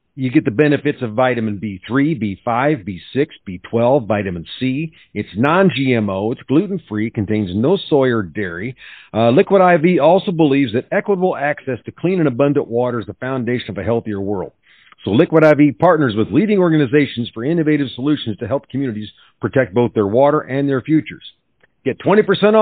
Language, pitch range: English, 120-165 Hz